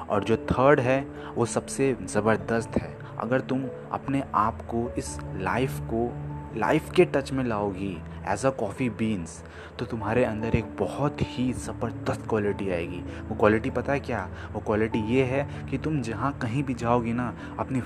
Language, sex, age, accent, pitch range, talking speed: Hindi, male, 20-39, native, 110-140 Hz, 170 wpm